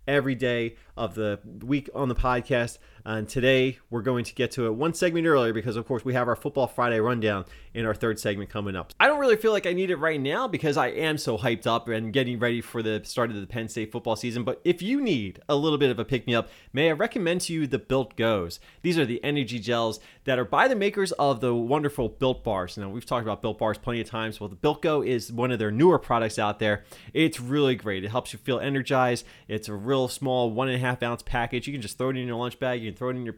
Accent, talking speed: American, 265 wpm